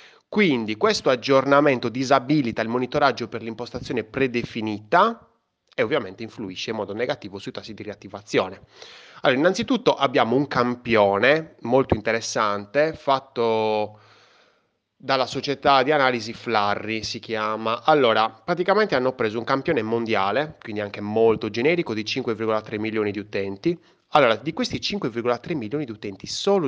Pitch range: 105-145 Hz